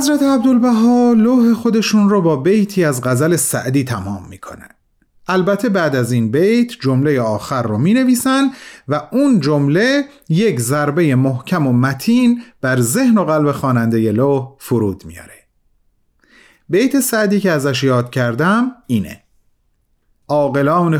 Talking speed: 135 wpm